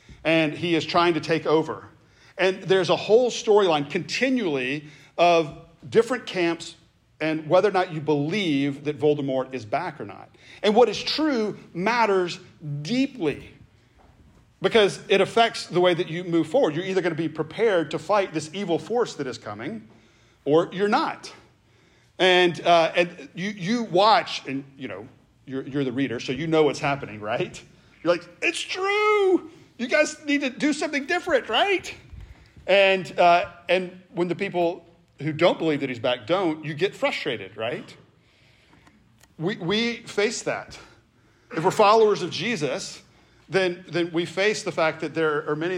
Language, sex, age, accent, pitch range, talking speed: English, male, 40-59, American, 145-200 Hz, 170 wpm